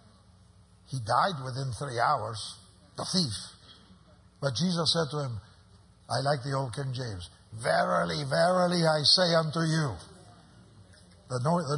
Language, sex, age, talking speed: English, male, 60-79, 125 wpm